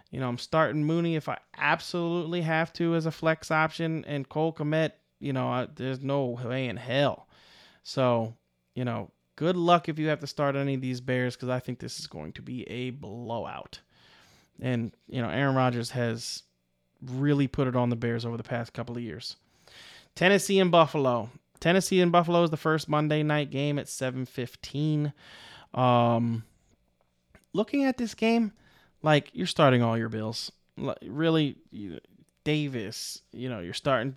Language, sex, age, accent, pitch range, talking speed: English, male, 20-39, American, 120-150 Hz, 170 wpm